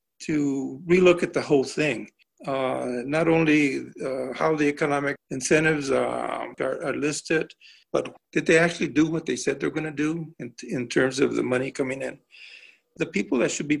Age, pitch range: 60-79, 140-170 Hz